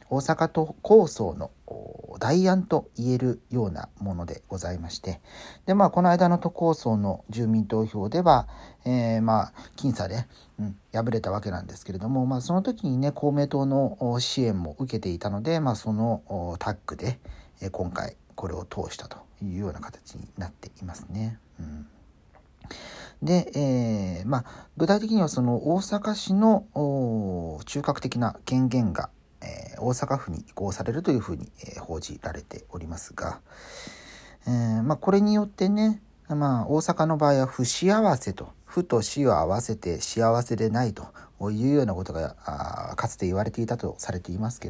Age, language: 50-69, Japanese